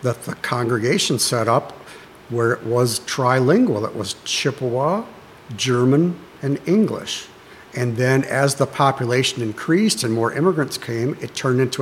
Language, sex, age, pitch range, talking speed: English, male, 60-79, 120-140 Hz, 140 wpm